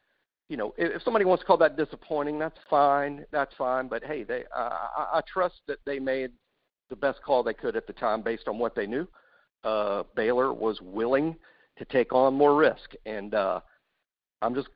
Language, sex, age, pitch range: English, male, 50-69, 130-170 Hz